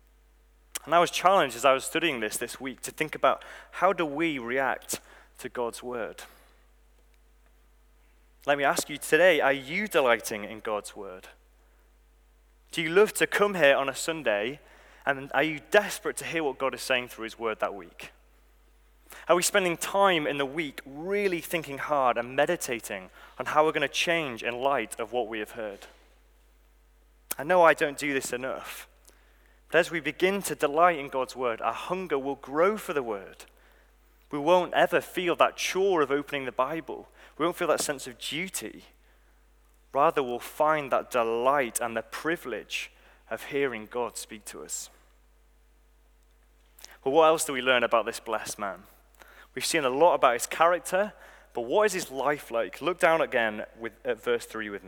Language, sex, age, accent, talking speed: English, male, 20-39, British, 180 wpm